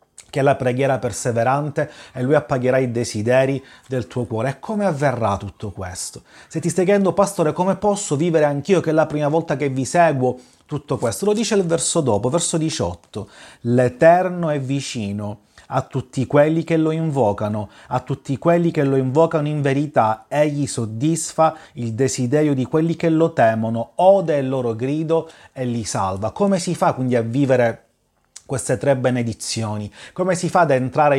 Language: Italian